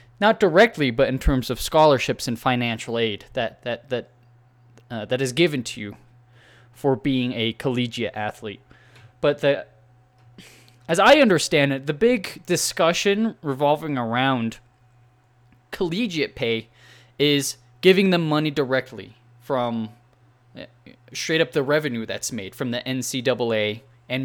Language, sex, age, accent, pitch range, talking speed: English, male, 20-39, American, 120-145 Hz, 135 wpm